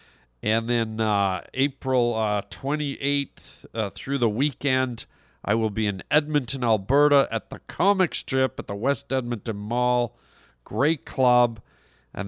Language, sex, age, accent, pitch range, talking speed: English, male, 40-59, American, 110-140 Hz, 135 wpm